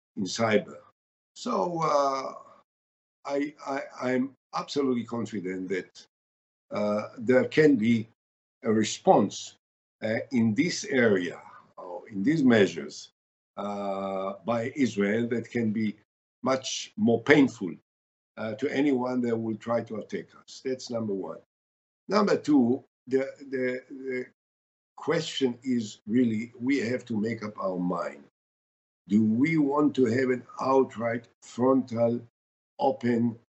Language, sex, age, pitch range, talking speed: English, male, 50-69, 95-130 Hz, 125 wpm